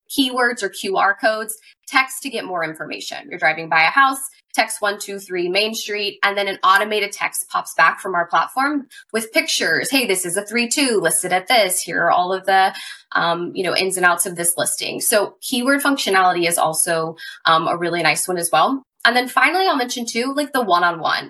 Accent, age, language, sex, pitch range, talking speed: American, 20-39, English, female, 180-255 Hz, 205 wpm